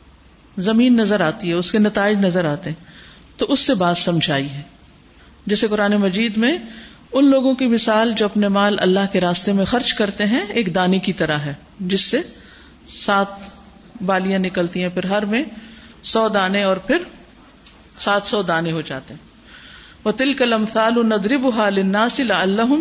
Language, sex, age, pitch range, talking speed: Urdu, female, 50-69, 185-250 Hz, 165 wpm